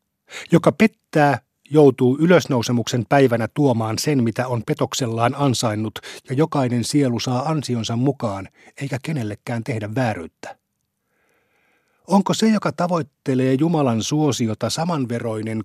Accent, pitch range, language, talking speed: native, 115-140 Hz, Finnish, 105 wpm